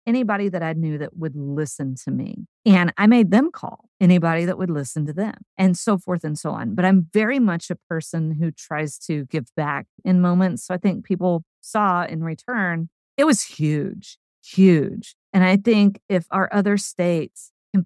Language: English